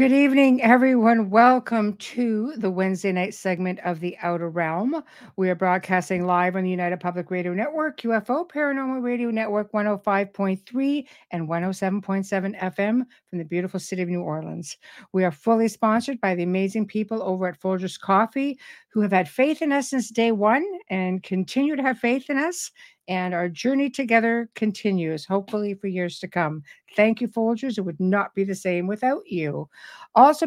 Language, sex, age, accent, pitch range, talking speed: English, female, 60-79, American, 190-250 Hz, 175 wpm